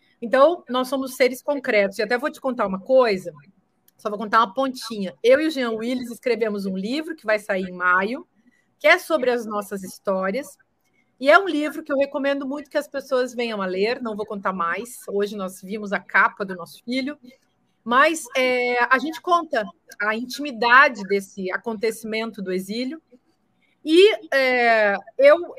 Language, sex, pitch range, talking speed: Portuguese, female, 220-275 Hz, 180 wpm